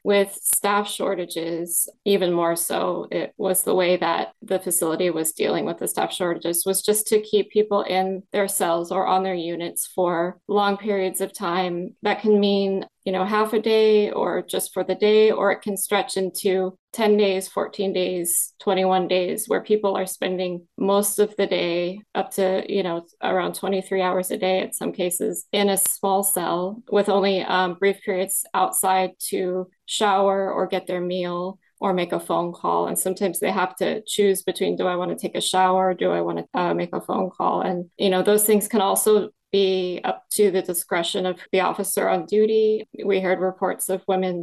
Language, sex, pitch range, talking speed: English, female, 180-200 Hz, 195 wpm